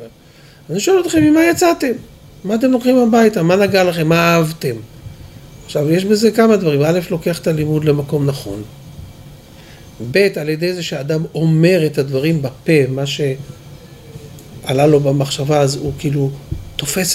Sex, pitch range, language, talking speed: male, 130-170 Hz, Hebrew, 145 wpm